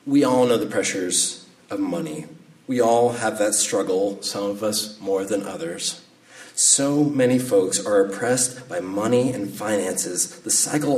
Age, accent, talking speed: 30-49, American, 160 wpm